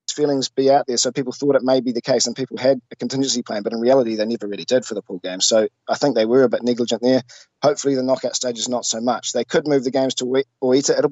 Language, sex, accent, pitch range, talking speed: English, male, Australian, 115-135 Hz, 290 wpm